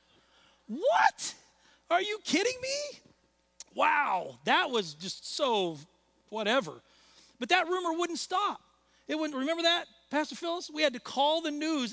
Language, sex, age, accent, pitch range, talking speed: English, male, 40-59, American, 240-325 Hz, 140 wpm